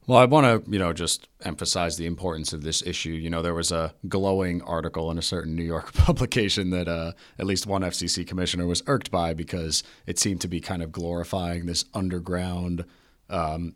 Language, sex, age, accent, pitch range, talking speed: English, male, 30-49, American, 80-95 Hz, 205 wpm